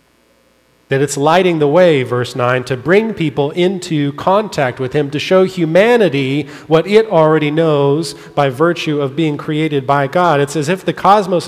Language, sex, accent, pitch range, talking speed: English, male, American, 125-170 Hz, 175 wpm